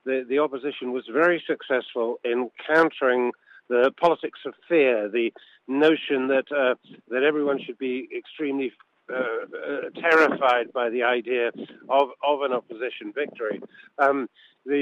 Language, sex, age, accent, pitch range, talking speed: English, male, 50-69, British, 125-150 Hz, 135 wpm